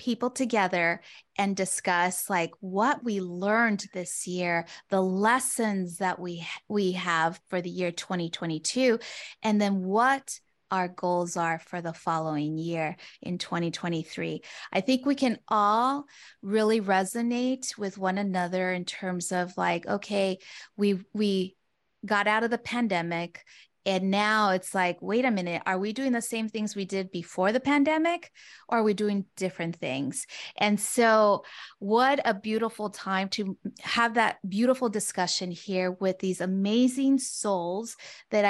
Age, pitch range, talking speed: 20-39, 180-225 Hz, 150 wpm